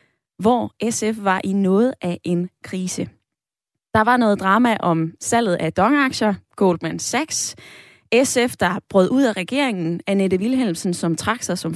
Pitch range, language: 185-250 Hz, Danish